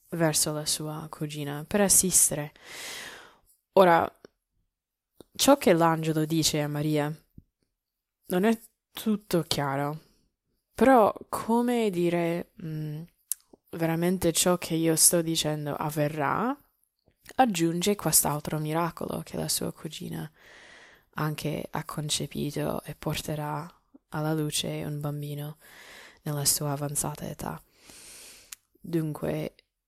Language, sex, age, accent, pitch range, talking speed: Italian, female, 20-39, native, 150-185 Hz, 95 wpm